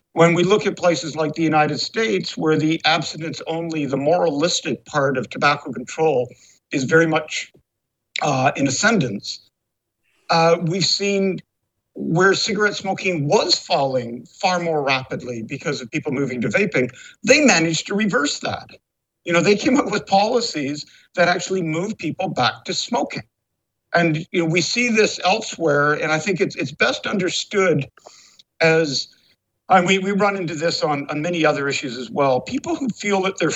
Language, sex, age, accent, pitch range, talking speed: English, male, 50-69, American, 145-195 Hz, 165 wpm